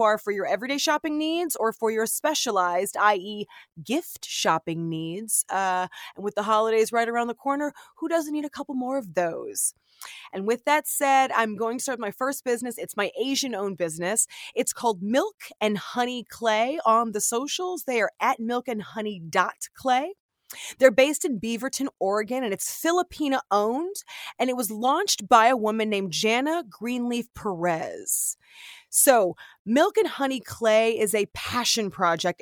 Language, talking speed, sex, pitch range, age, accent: English, 165 wpm, female, 210-265 Hz, 20-39, American